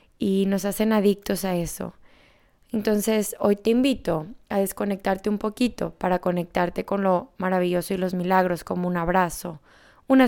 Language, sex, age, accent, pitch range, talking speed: Spanish, female, 20-39, Mexican, 175-205 Hz, 150 wpm